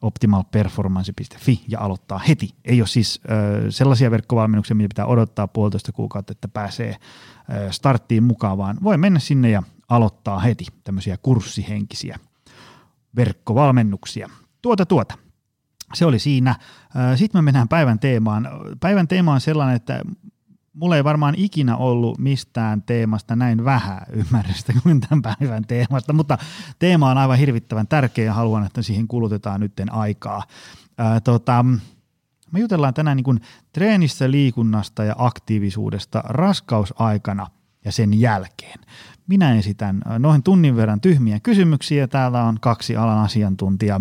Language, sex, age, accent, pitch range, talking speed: Finnish, male, 30-49, native, 105-140 Hz, 135 wpm